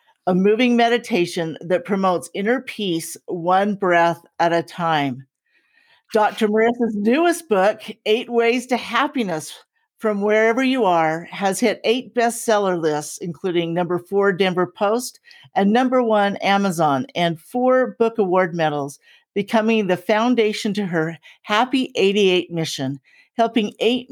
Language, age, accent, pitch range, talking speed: English, 50-69, American, 180-235 Hz, 130 wpm